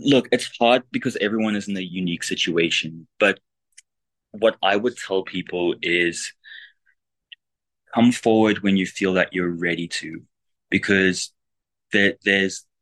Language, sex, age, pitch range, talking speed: English, male, 20-39, 85-95 Hz, 130 wpm